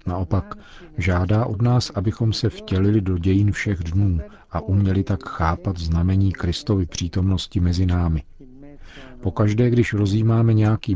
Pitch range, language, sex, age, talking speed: 85-105 Hz, Czech, male, 40-59, 130 wpm